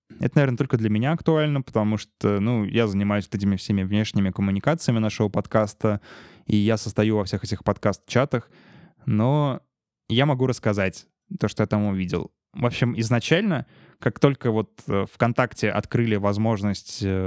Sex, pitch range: male, 100-120 Hz